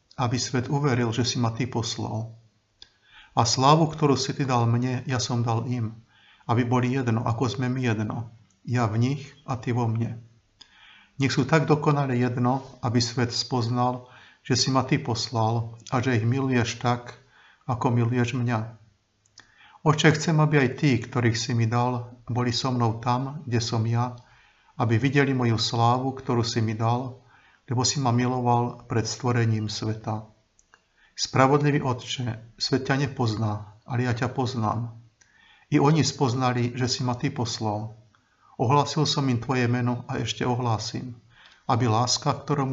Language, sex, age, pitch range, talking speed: Slovak, male, 50-69, 115-130 Hz, 160 wpm